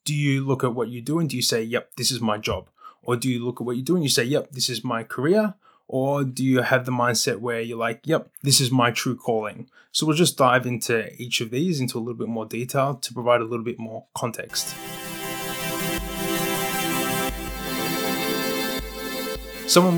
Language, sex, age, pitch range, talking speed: English, male, 20-39, 115-130 Hz, 200 wpm